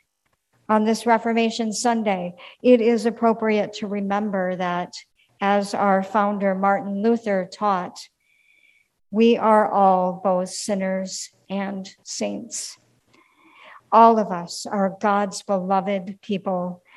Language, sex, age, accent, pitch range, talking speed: English, male, 60-79, American, 190-225 Hz, 105 wpm